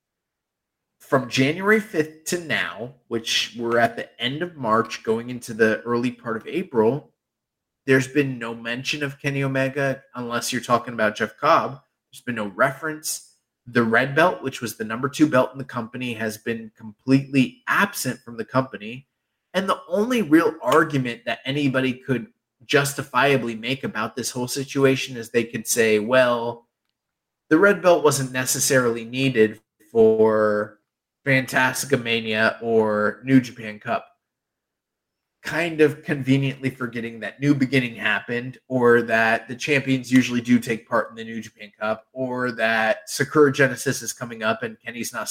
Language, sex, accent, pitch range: English, male, American, 115-140 Hz